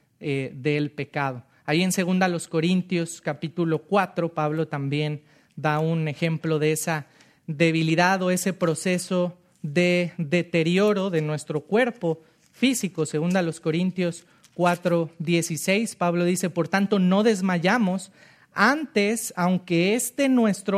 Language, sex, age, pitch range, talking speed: English, male, 40-59, 150-195 Hz, 120 wpm